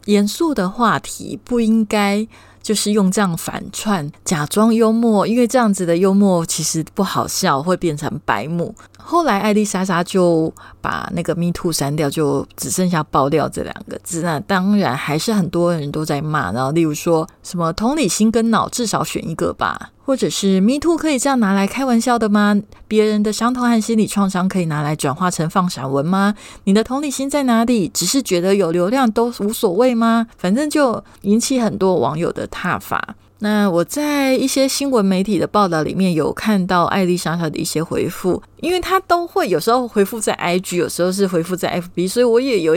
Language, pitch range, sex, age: Chinese, 170-230 Hz, female, 20-39